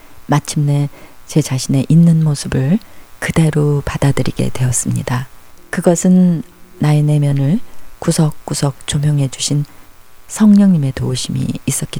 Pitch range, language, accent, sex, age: 130-165 Hz, Korean, native, female, 40-59